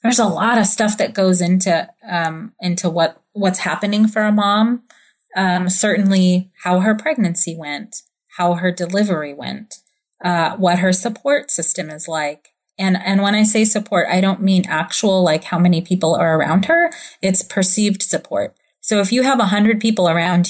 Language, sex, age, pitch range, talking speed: English, female, 30-49, 180-215 Hz, 180 wpm